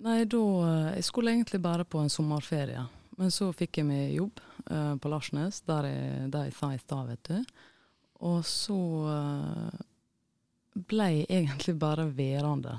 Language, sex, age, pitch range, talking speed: English, female, 20-39, 135-165 Hz, 140 wpm